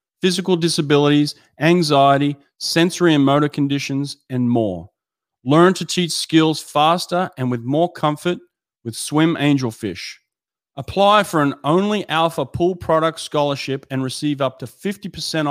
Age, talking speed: 30-49, 130 wpm